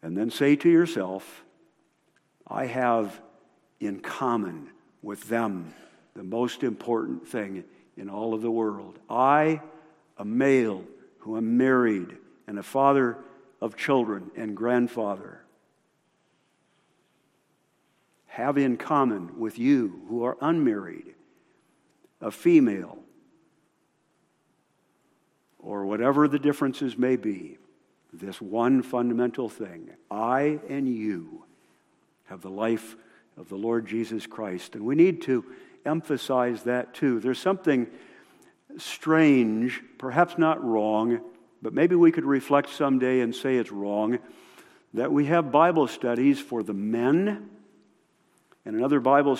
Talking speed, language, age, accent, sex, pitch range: 120 wpm, English, 50-69, American, male, 115-155 Hz